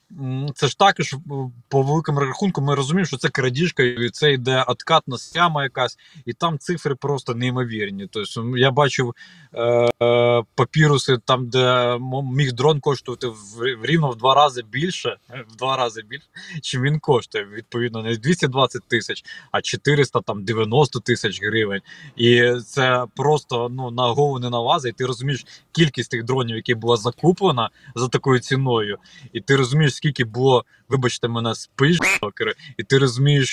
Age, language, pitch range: 20-39, Ukrainian, 120-150 Hz